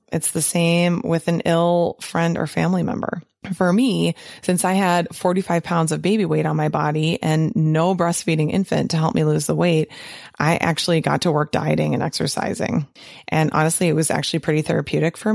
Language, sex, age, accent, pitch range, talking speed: English, female, 20-39, American, 155-175 Hz, 190 wpm